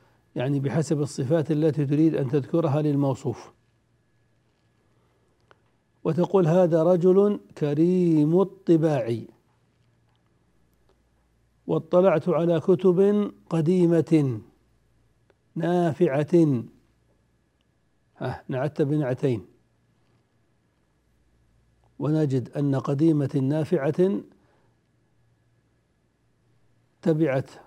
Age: 60-79